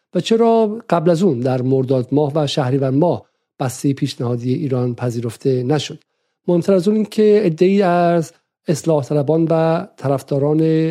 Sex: male